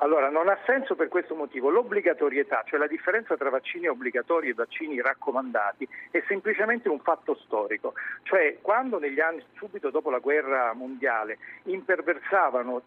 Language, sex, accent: Italian, male, native